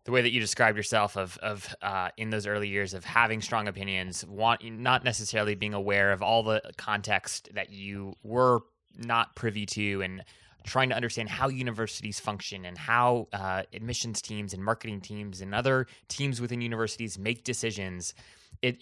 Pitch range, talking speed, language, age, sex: 100-130 Hz, 175 wpm, English, 20-39, male